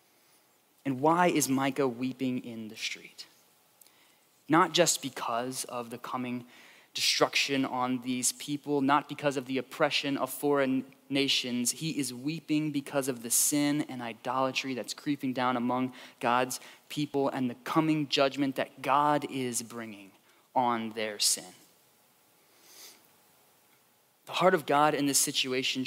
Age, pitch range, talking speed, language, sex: 20-39, 125-150 Hz, 135 wpm, English, male